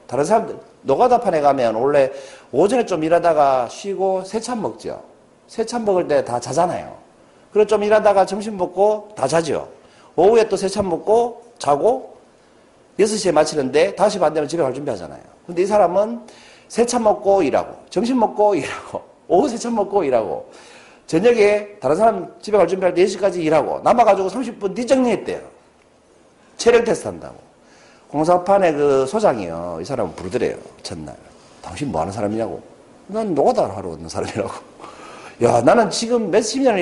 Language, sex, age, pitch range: Korean, male, 40-59, 160-225 Hz